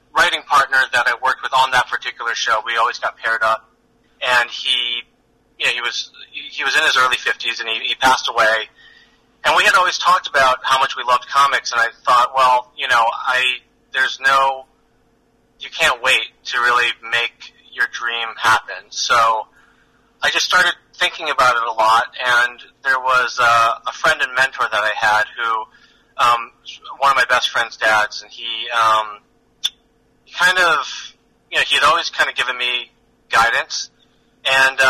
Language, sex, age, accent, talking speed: English, male, 30-49, American, 180 wpm